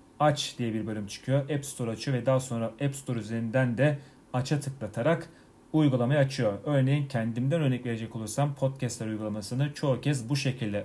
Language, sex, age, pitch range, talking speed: Turkish, male, 40-59, 115-140 Hz, 165 wpm